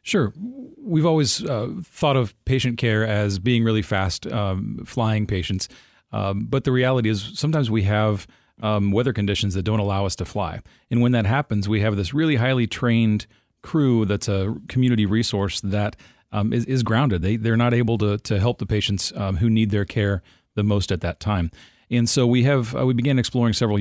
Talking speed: 200 wpm